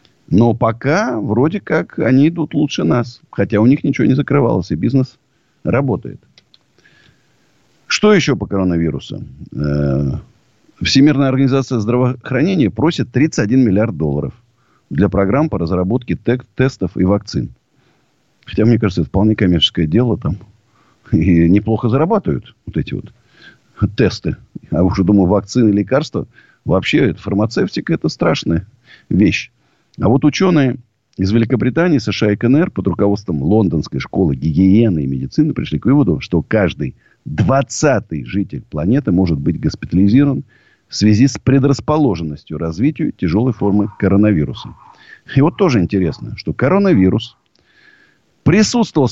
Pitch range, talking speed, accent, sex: 95-135 Hz, 125 wpm, native, male